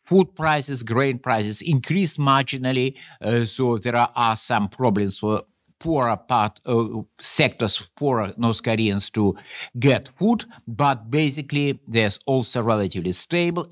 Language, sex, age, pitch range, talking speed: English, male, 50-69, 110-145 Hz, 130 wpm